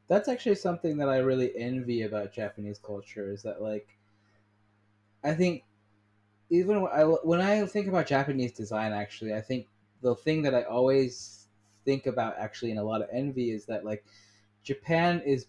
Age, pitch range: 20-39, 105-130 Hz